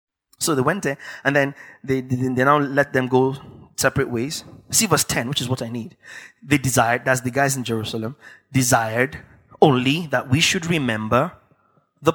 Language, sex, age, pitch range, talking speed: English, male, 20-39, 120-145 Hz, 180 wpm